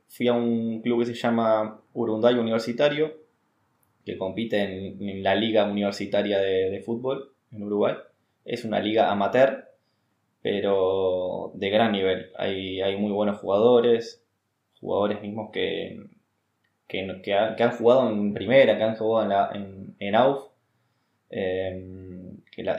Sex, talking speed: male, 130 wpm